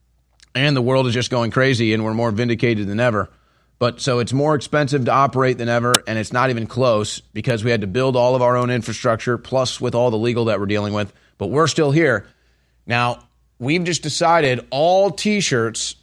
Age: 30-49